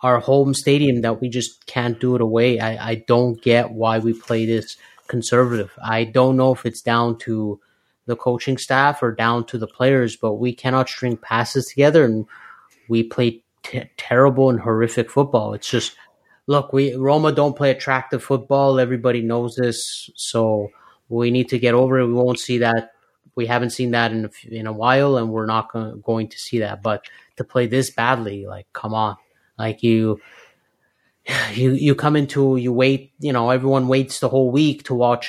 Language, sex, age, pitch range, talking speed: English, male, 30-49, 115-130 Hz, 185 wpm